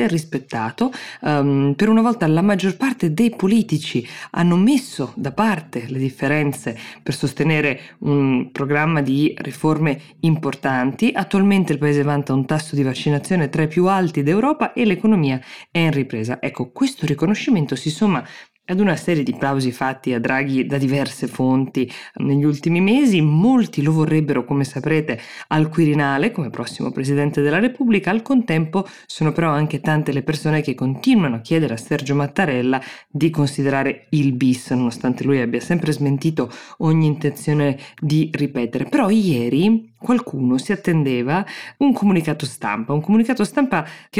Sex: female